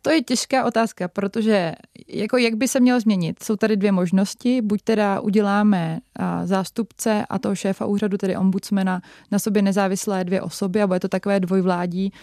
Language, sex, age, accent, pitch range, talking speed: Czech, female, 20-39, native, 185-210 Hz, 175 wpm